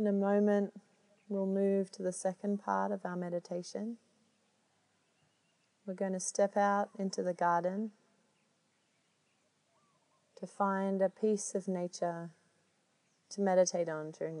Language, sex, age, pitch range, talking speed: English, female, 30-49, 175-205 Hz, 125 wpm